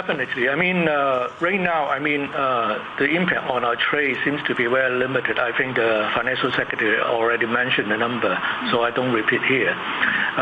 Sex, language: male, English